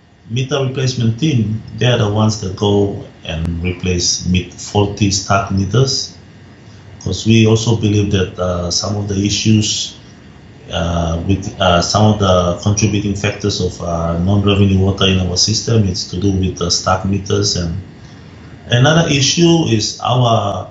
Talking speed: 150 wpm